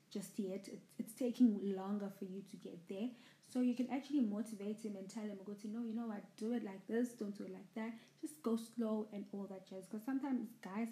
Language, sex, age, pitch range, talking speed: English, female, 20-39, 200-240 Hz, 240 wpm